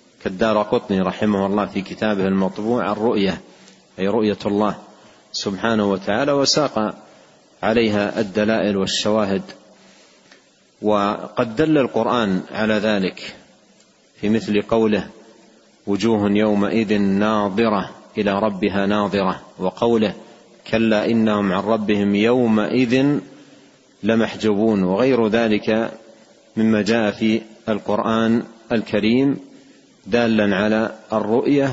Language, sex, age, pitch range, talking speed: Arabic, male, 40-59, 105-120 Hz, 90 wpm